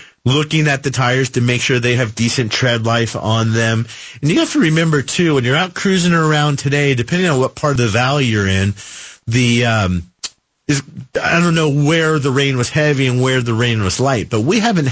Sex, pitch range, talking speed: male, 115-150 Hz, 220 wpm